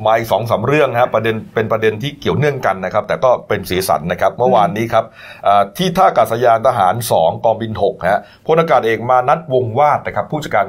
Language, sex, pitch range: Thai, male, 110-140 Hz